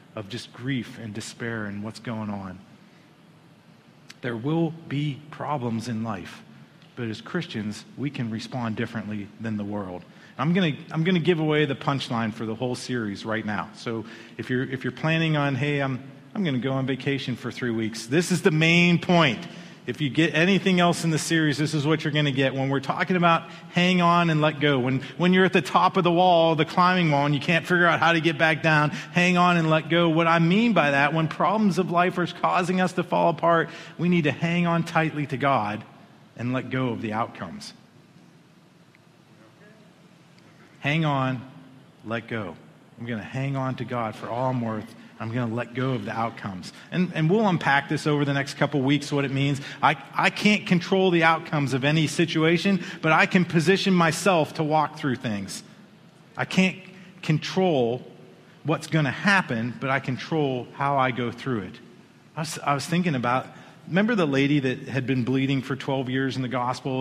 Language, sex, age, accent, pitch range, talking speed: English, male, 40-59, American, 125-170 Hz, 205 wpm